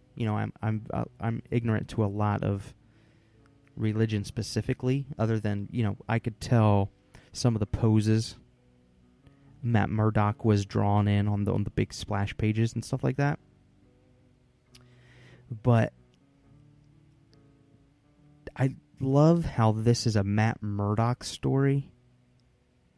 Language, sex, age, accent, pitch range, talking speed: English, male, 20-39, American, 105-125 Hz, 130 wpm